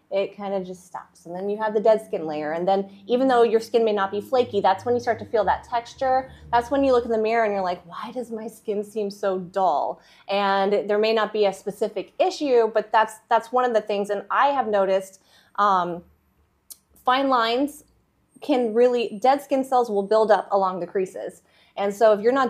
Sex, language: female, English